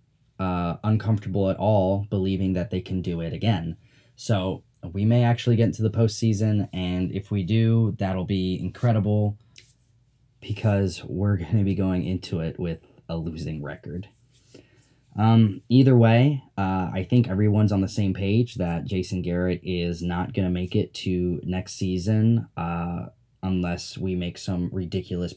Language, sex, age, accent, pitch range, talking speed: English, male, 10-29, American, 90-115 Hz, 155 wpm